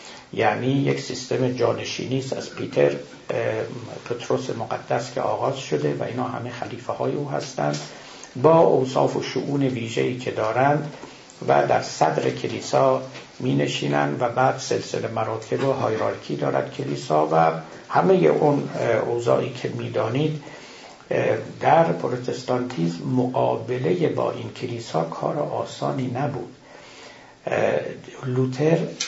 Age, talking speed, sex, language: 60-79, 115 wpm, male, Persian